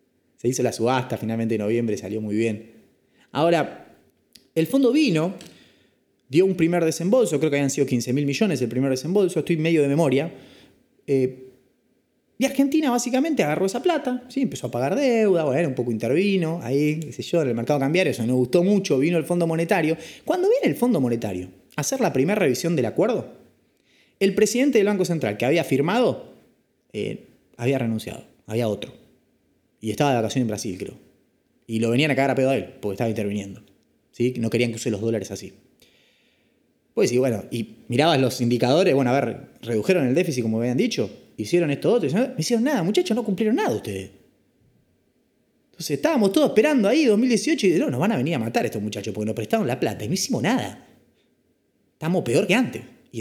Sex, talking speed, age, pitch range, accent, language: male, 195 wpm, 20-39, 120-195 Hz, Argentinian, Spanish